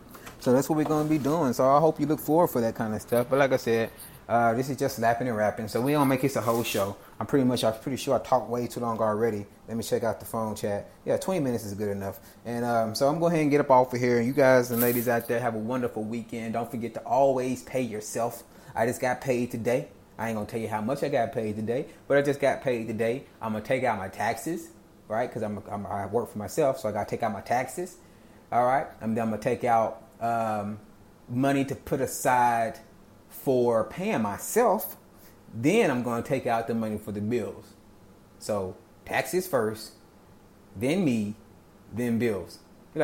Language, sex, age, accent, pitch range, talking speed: English, male, 30-49, American, 115-145 Hz, 240 wpm